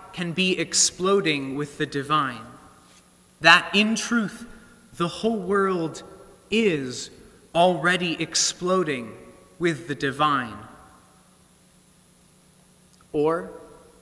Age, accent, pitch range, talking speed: 30-49, American, 130-190 Hz, 80 wpm